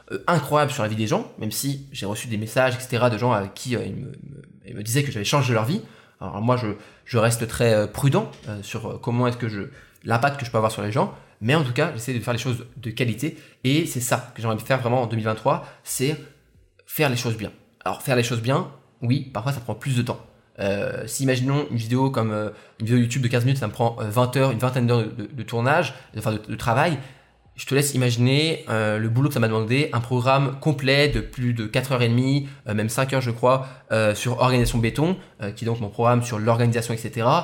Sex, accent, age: male, French, 20-39